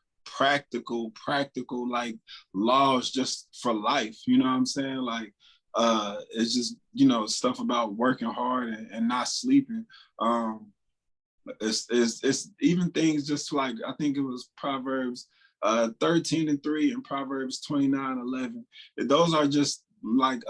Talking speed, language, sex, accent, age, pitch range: 150 wpm, English, male, American, 20-39, 125-180 Hz